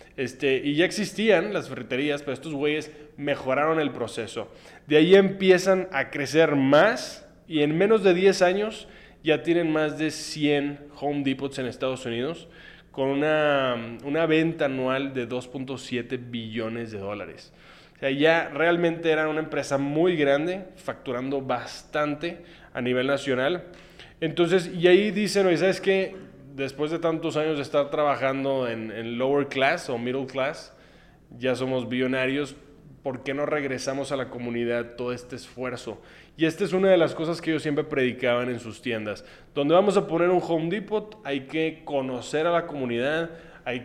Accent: Mexican